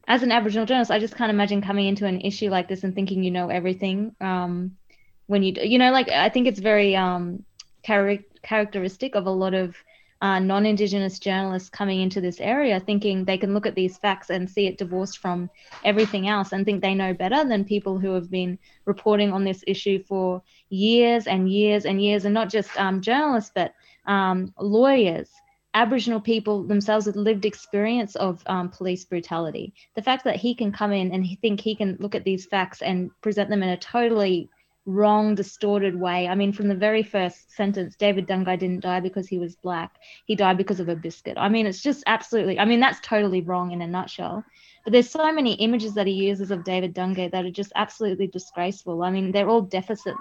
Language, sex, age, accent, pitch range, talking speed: English, female, 20-39, Australian, 185-215 Hz, 210 wpm